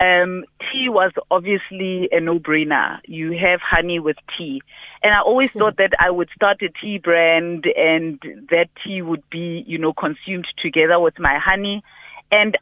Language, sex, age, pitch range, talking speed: English, female, 30-49, 170-210 Hz, 170 wpm